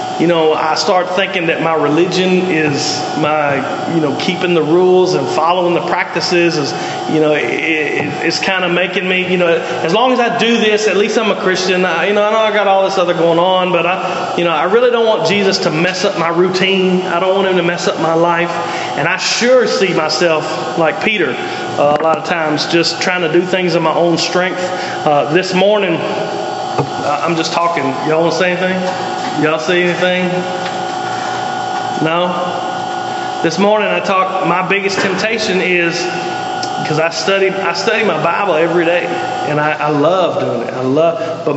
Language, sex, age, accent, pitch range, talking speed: English, male, 30-49, American, 155-190 Hz, 200 wpm